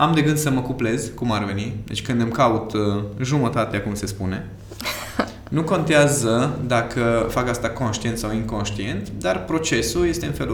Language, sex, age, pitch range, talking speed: Romanian, male, 20-39, 100-145 Hz, 170 wpm